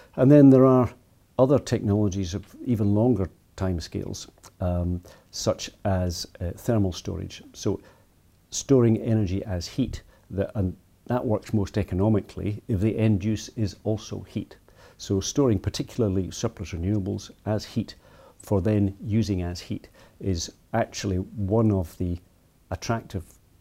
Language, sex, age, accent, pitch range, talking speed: English, male, 50-69, British, 95-110 Hz, 135 wpm